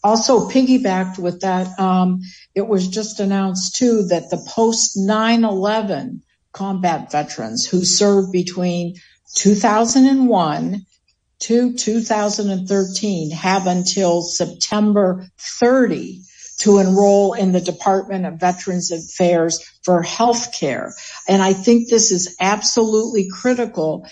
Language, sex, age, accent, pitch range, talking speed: English, female, 60-79, American, 185-220 Hz, 105 wpm